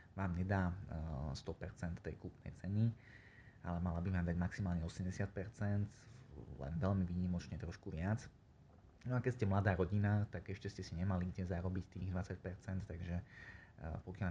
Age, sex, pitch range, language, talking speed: 20-39, male, 90-105 Hz, Slovak, 145 wpm